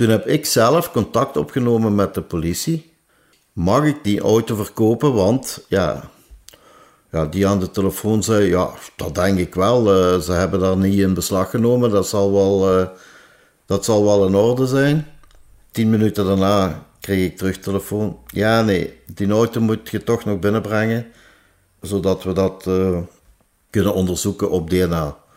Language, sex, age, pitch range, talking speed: Dutch, male, 50-69, 95-115 Hz, 165 wpm